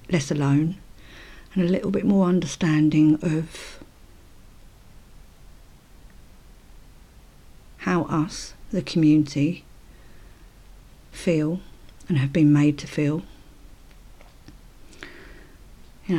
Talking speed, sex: 80 wpm, female